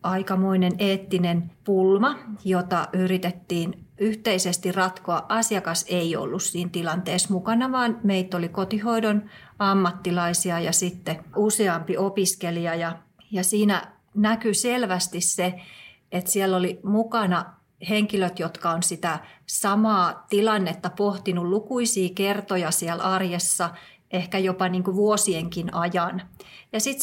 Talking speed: 105 wpm